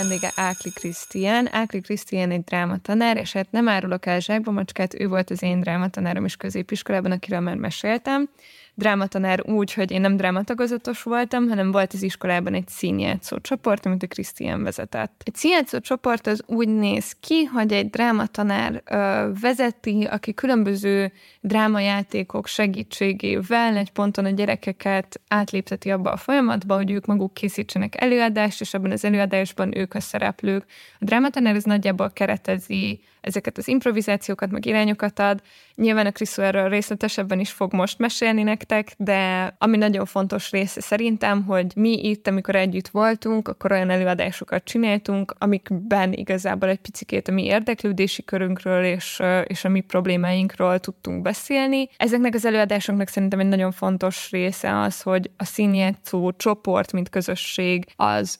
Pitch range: 190-215 Hz